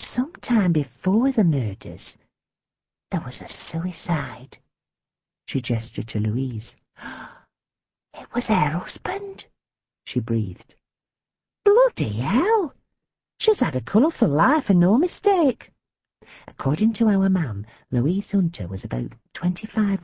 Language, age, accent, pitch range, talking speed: English, 50-69, British, 125-180 Hz, 115 wpm